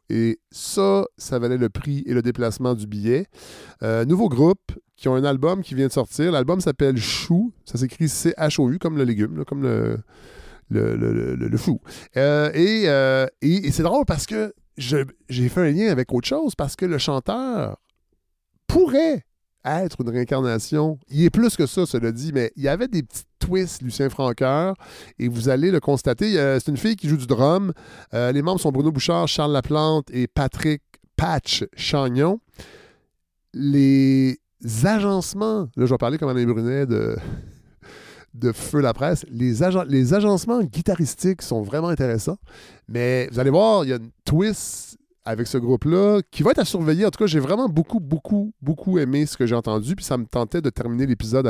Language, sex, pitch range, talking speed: French, male, 120-170 Hz, 190 wpm